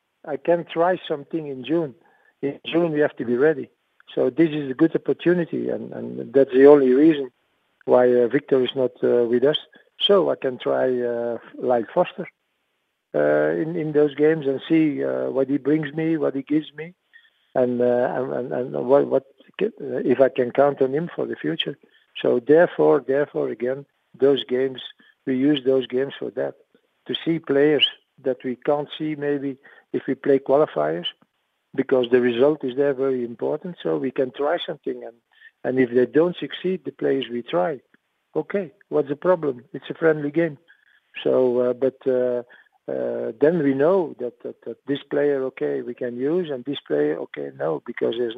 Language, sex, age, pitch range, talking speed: English, male, 50-69, 125-155 Hz, 185 wpm